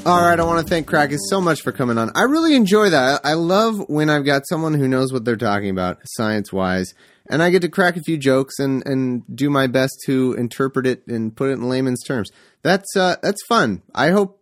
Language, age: English, 30-49